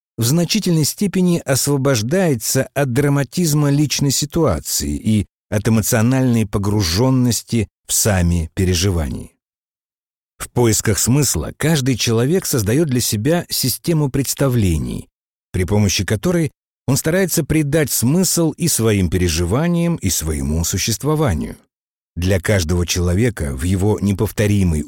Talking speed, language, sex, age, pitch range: 105 wpm, Russian, male, 60-79, 90-145 Hz